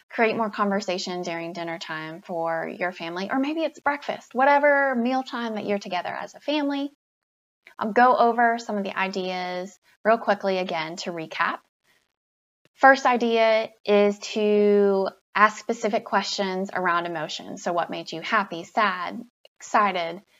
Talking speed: 145 wpm